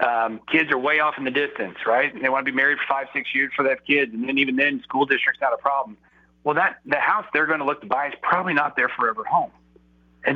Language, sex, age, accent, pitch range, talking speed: English, male, 40-59, American, 120-155 Hz, 280 wpm